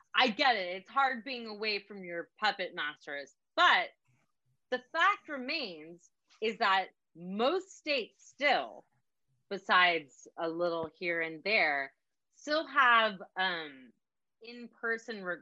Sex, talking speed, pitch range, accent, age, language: female, 115 wpm, 180-270 Hz, American, 30-49, English